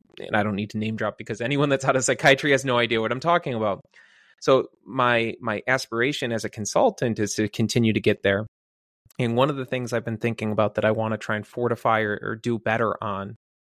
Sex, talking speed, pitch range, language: male, 240 wpm, 105-125 Hz, English